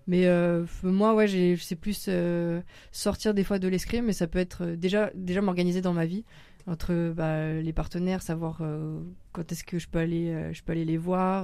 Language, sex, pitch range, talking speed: French, female, 165-180 Hz, 210 wpm